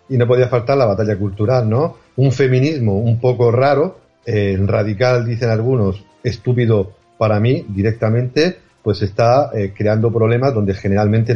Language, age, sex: Spanish, 40-59, male